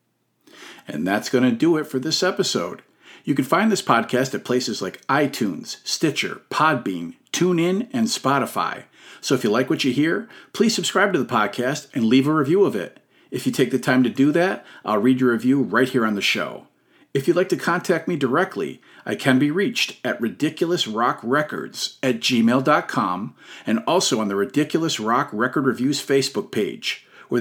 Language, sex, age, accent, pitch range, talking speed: English, male, 50-69, American, 130-185 Hz, 185 wpm